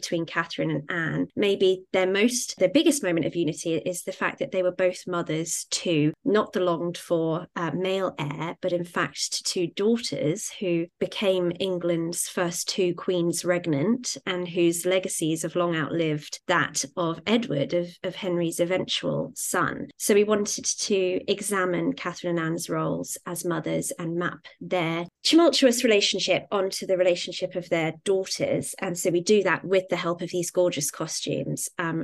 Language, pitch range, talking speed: English, 170-190 Hz, 165 wpm